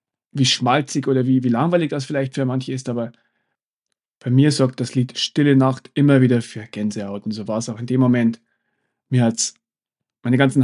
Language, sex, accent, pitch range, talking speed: German, male, German, 115-135 Hz, 205 wpm